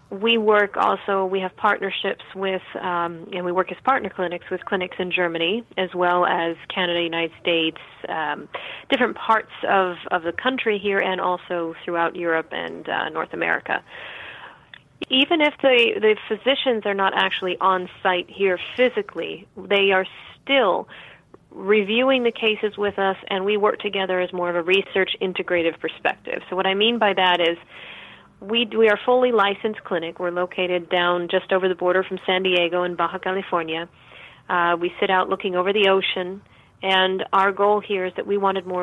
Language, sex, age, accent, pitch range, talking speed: English, female, 30-49, American, 175-200 Hz, 180 wpm